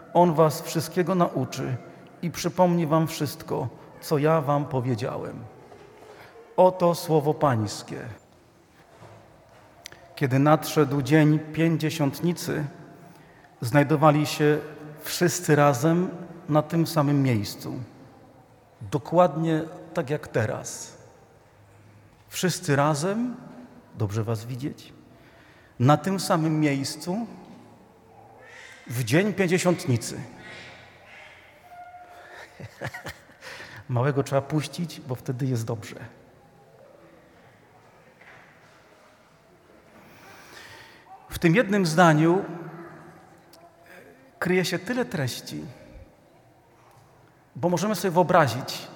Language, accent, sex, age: Polish, native, male, 40-59